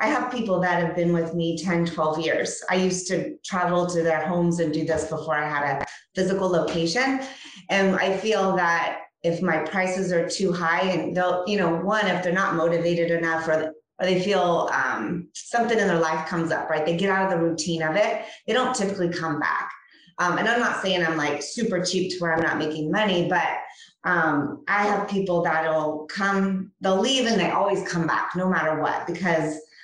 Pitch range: 160-195 Hz